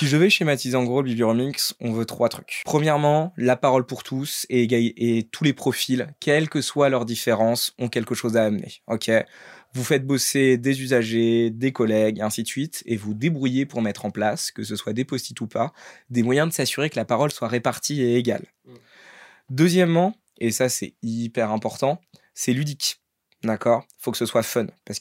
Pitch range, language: 115-140 Hz, French